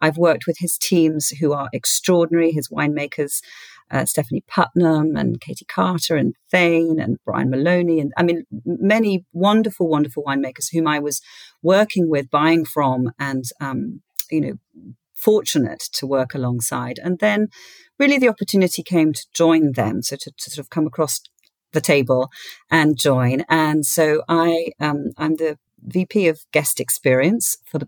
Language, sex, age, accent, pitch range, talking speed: English, female, 40-59, British, 140-170 Hz, 160 wpm